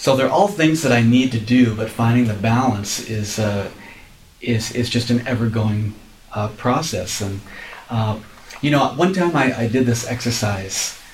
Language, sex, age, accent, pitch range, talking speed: English, male, 40-59, American, 110-130 Hz, 180 wpm